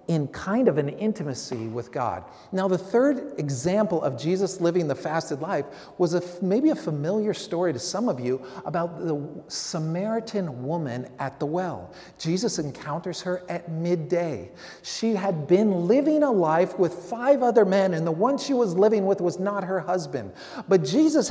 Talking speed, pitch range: 175 wpm, 155-205 Hz